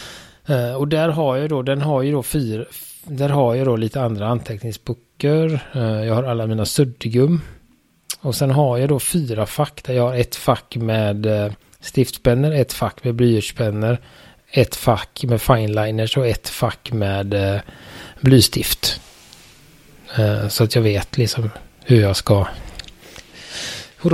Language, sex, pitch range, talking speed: Swedish, male, 105-125 Hz, 140 wpm